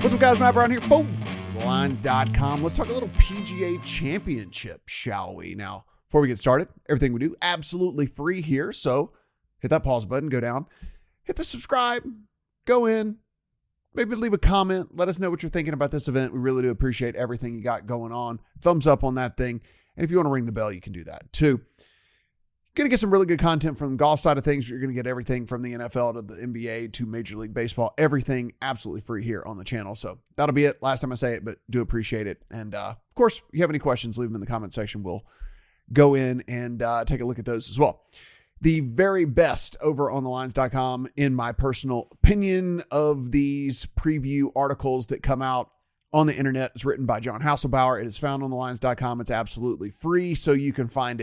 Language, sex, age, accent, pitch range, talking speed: English, male, 30-49, American, 120-155 Hz, 225 wpm